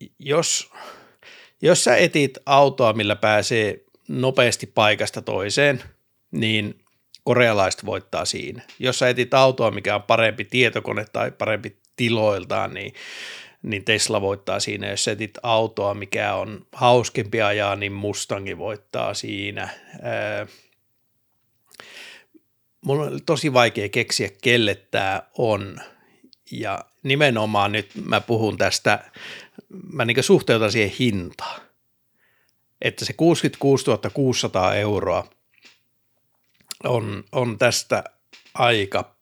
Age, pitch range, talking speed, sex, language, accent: 60-79, 105-130 Hz, 105 wpm, male, Finnish, native